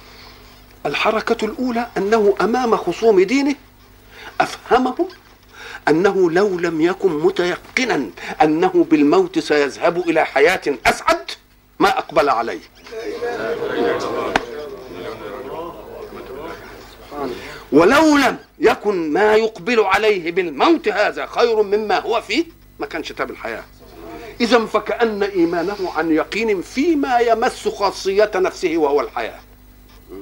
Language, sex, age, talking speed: Arabic, male, 50-69, 95 wpm